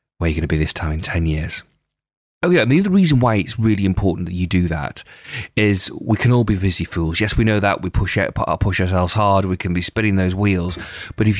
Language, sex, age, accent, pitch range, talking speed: English, male, 30-49, British, 90-105 Hz, 270 wpm